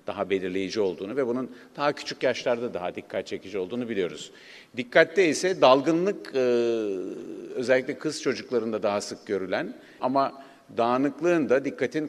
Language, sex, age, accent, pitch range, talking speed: Turkish, male, 50-69, native, 105-150 Hz, 130 wpm